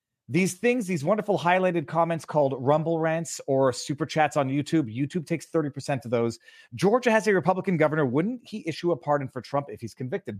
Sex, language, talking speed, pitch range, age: male, English, 200 wpm, 140-195 Hz, 30-49